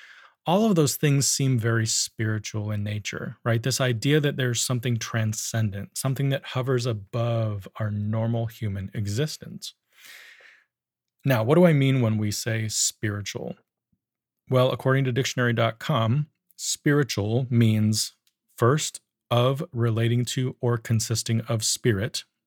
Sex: male